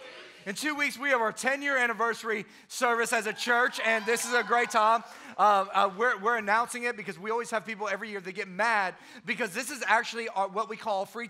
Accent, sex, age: American, male, 30-49